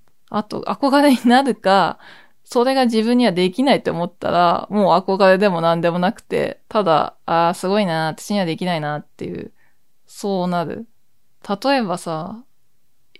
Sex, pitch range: female, 180-225 Hz